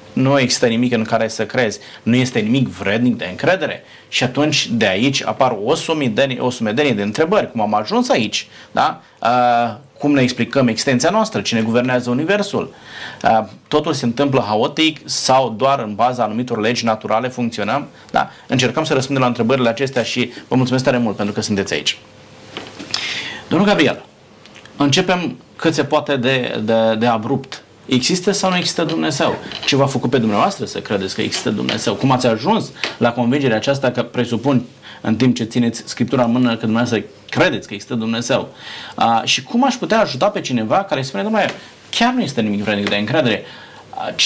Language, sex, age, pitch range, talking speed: Romanian, male, 30-49, 120-160 Hz, 175 wpm